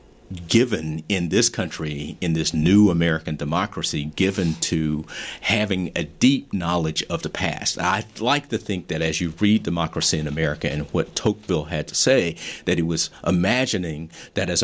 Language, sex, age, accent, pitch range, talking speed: English, male, 50-69, American, 85-105 Hz, 170 wpm